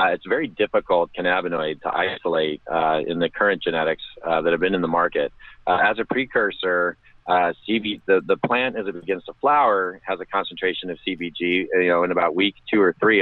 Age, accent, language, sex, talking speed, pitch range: 40-59, American, English, male, 215 wpm, 85-95 Hz